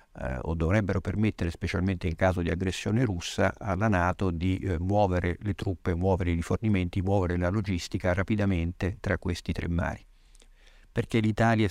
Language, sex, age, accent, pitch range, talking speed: Italian, male, 50-69, native, 85-100 Hz, 150 wpm